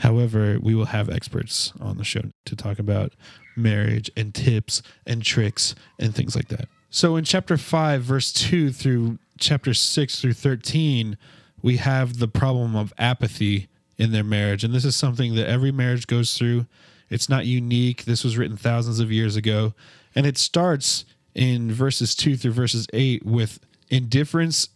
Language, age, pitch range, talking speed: English, 20-39, 115-135 Hz, 170 wpm